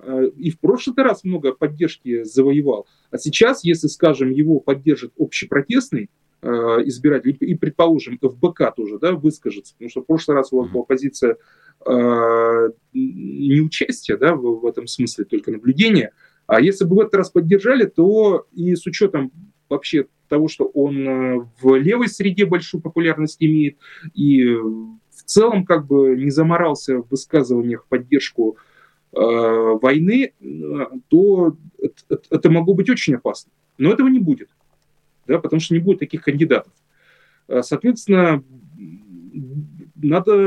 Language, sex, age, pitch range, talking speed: Russian, male, 20-39, 135-195 Hz, 140 wpm